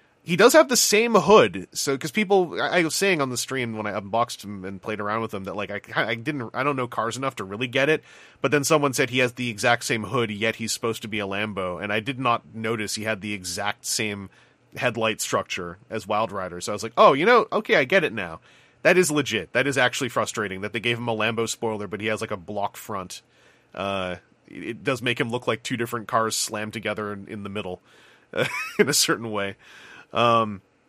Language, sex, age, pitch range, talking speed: English, male, 30-49, 110-160 Hz, 245 wpm